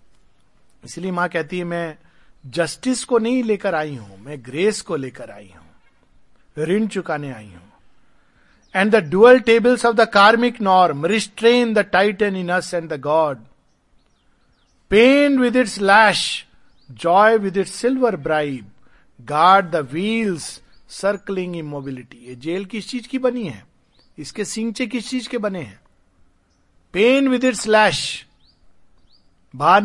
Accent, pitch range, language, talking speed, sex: native, 145-215 Hz, Hindi, 140 wpm, male